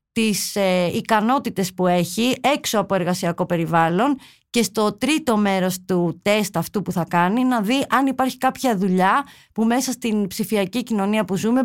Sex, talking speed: female, 160 wpm